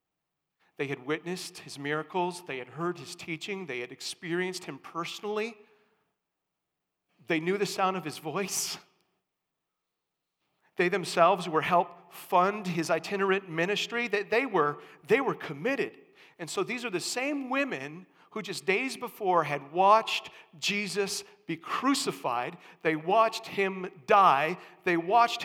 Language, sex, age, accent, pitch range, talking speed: English, male, 40-59, American, 155-205 Hz, 135 wpm